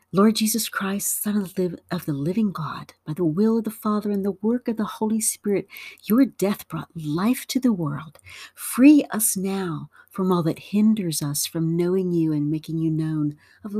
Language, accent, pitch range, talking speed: English, American, 155-200 Hz, 190 wpm